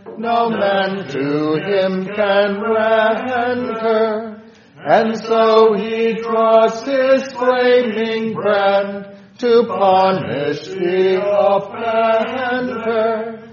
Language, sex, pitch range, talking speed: English, male, 195-230 Hz, 75 wpm